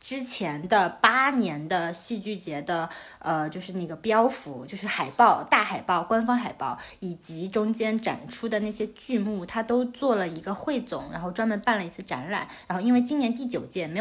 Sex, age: female, 20-39